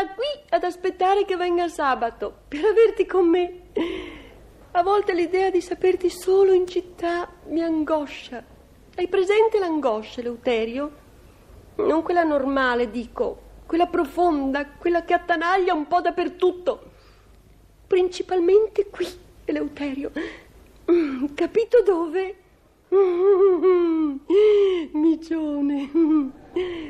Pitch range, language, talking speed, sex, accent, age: 255-360 Hz, Italian, 95 wpm, female, native, 40-59